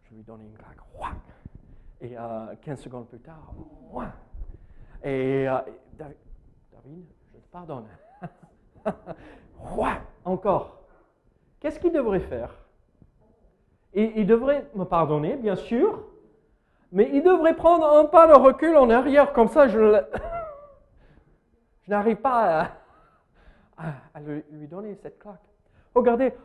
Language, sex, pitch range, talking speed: French, male, 180-290 Hz, 115 wpm